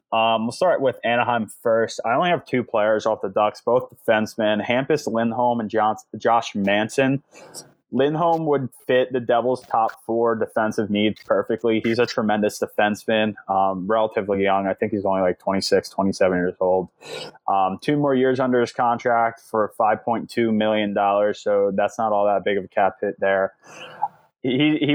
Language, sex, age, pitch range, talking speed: English, male, 20-39, 100-120 Hz, 170 wpm